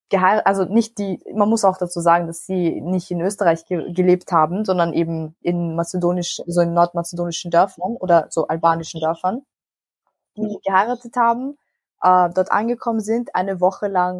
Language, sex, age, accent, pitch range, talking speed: German, female, 20-39, German, 175-210 Hz, 160 wpm